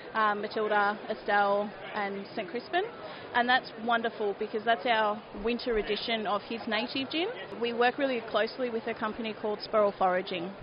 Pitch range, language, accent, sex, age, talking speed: 210-250 Hz, English, Australian, female, 30-49, 160 wpm